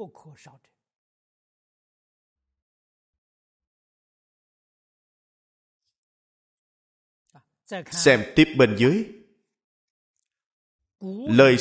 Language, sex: Vietnamese, male